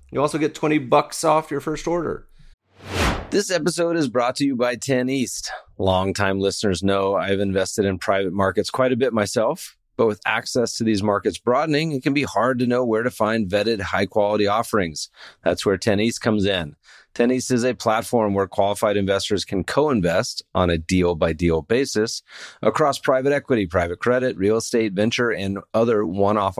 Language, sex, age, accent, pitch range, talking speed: English, male, 30-49, American, 95-125 Hz, 190 wpm